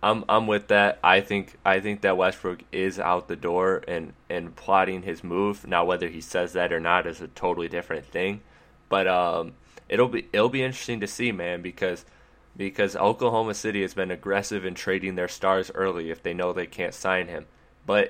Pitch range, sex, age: 90-100 Hz, male, 20-39